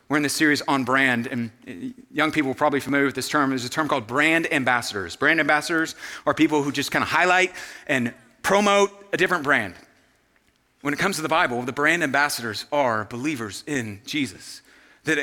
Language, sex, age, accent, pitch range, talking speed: English, male, 30-49, American, 125-160 Hz, 195 wpm